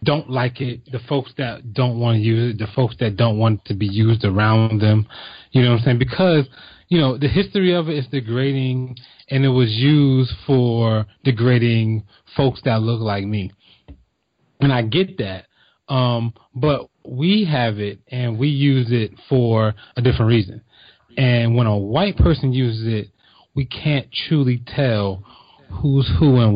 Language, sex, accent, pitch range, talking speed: English, male, American, 110-140 Hz, 175 wpm